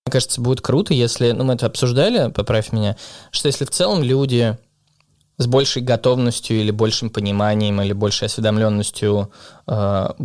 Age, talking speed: 20-39, 150 wpm